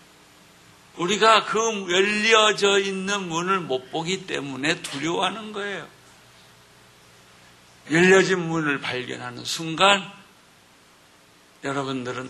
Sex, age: male, 60-79